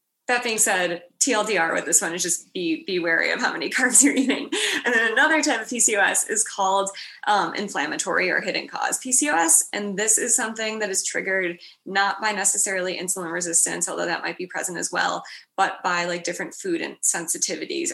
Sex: female